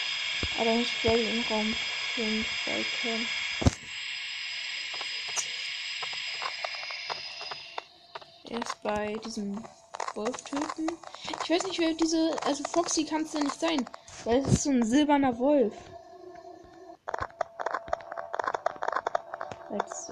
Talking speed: 95 wpm